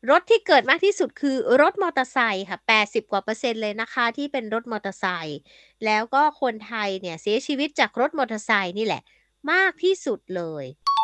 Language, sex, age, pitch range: Thai, female, 20-39, 210-290 Hz